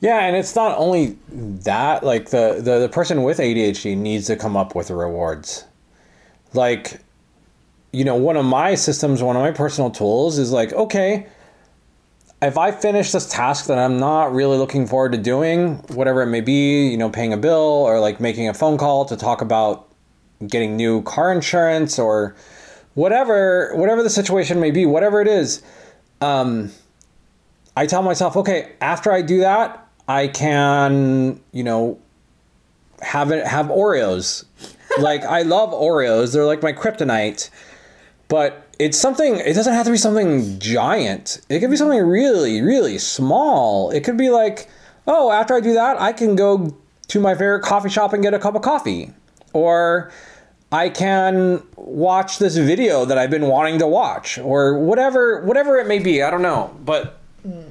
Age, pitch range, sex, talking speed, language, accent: 20-39, 120-190 Hz, male, 175 wpm, English, American